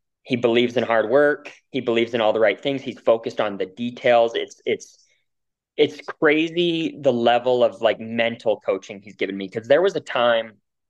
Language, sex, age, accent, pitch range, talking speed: English, male, 20-39, American, 110-130 Hz, 195 wpm